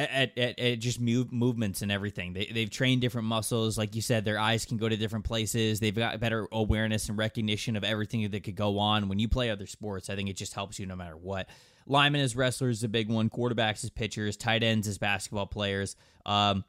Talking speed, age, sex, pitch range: 225 wpm, 20-39, male, 105-125 Hz